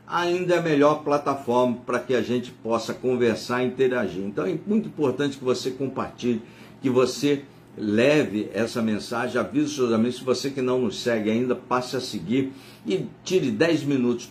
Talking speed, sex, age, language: 175 wpm, male, 60-79, Portuguese